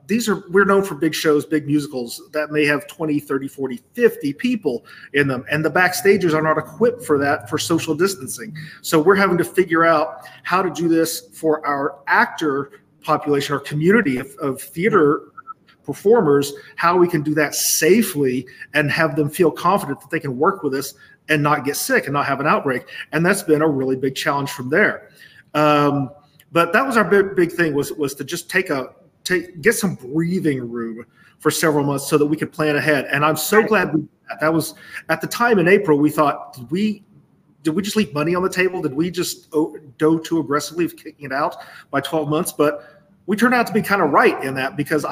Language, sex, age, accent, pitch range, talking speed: English, male, 40-59, American, 145-185 Hz, 220 wpm